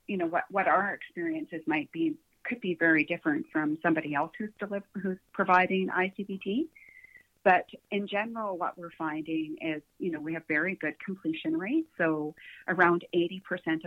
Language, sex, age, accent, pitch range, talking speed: English, female, 40-59, American, 160-200 Hz, 165 wpm